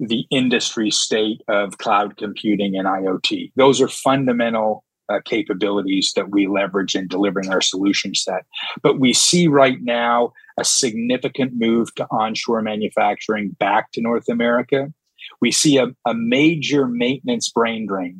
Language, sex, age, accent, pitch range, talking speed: English, male, 40-59, American, 110-135 Hz, 145 wpm